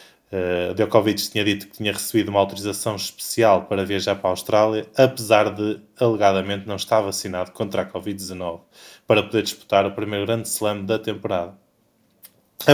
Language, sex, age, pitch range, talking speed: Portuguese, male, 20-39, 100-115 Hz, 160 wpm